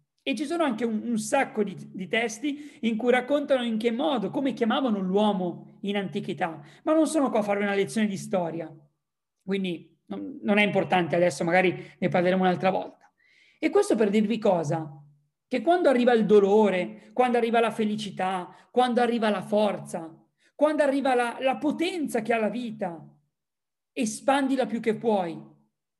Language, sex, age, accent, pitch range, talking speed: Italian, male, 40-59, native, 185-255 Hz, 170 wpm